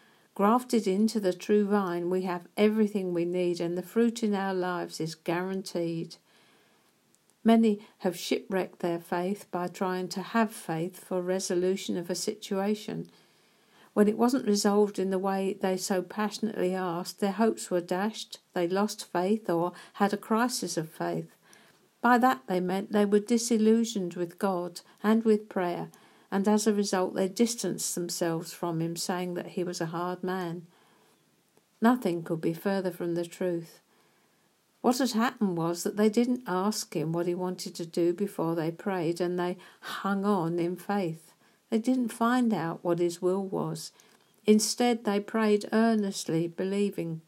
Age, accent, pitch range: 50-69, British, 175-210 Hz